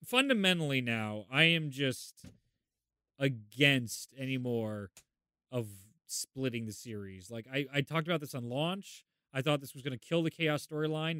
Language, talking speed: English, 160 wpm